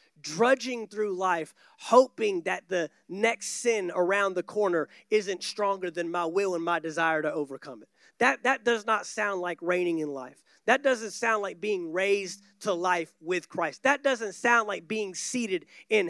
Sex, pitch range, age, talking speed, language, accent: male, 190-260 Hz, 30-49, 180 wpm, English, American